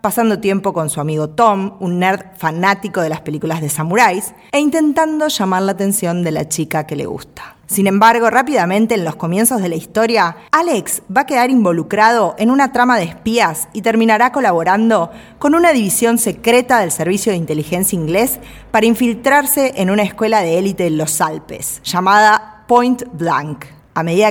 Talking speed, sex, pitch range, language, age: 175 wpm, female, 175-225 Hz, Spanish, 20-39